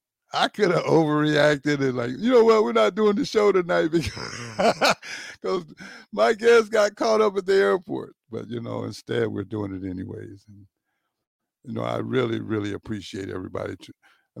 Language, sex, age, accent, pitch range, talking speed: English, male, 60-79, American, 110-170 Hz, 170 wpm